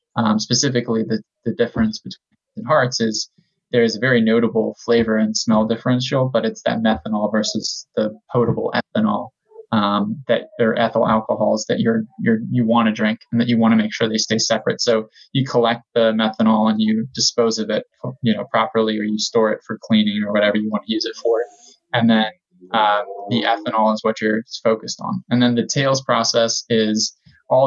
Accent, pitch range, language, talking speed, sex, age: American, 110-120 Hz, English, 200 wpm, male, 20-39